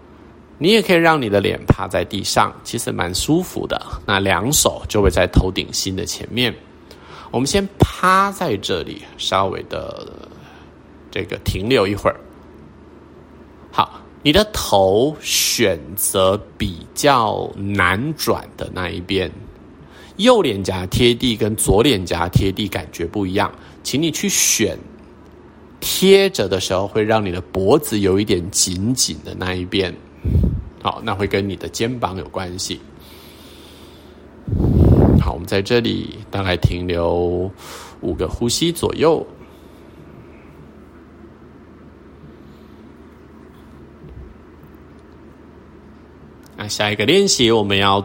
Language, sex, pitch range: Chinese, male, 75-105 Hz